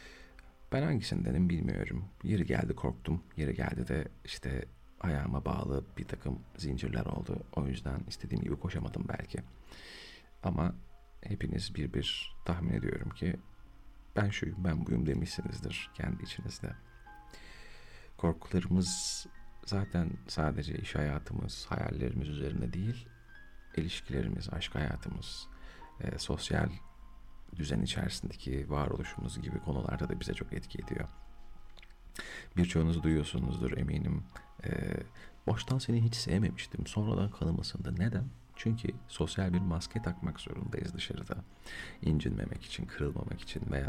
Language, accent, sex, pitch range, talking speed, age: Turkish, native, male, 70-100 Hz, 110 wpm, 40-59